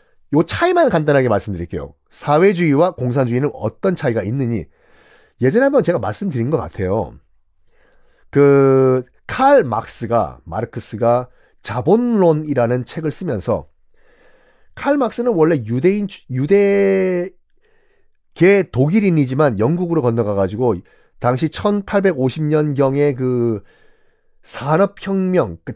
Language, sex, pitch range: Korean, male, 120-190 Hz